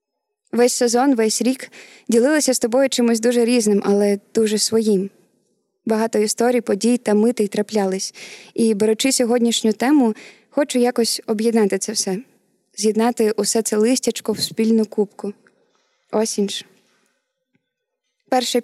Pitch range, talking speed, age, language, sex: 210-245 Hz, 120 wpm, 20-39, Ukrainian, female